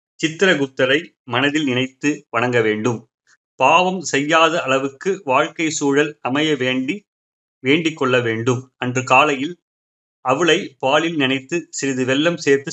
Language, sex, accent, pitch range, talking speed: Tamil, male, native, 130-165 Hz, 110 wpm